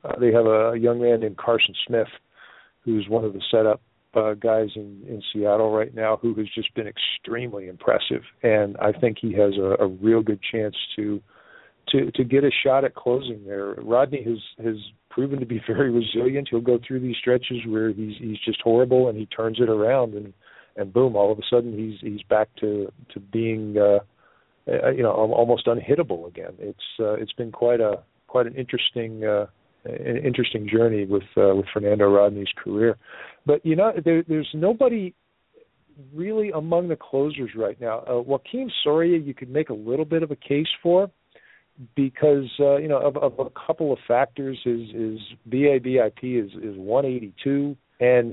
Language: English